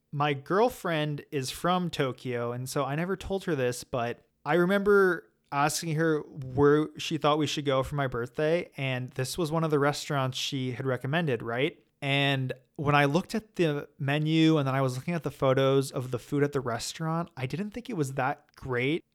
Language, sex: English, male